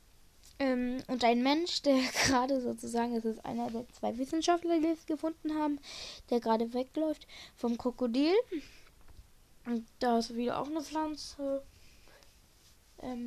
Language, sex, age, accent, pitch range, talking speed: German, female, 10-29, German, 230-305 Hz, 130 wpm